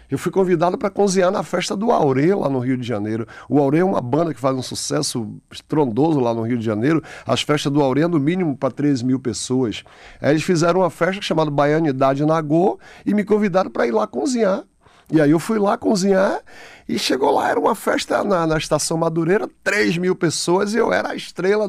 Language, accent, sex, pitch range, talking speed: Portuguese, Brazilian, male, 135-180 Hz, 215 wpm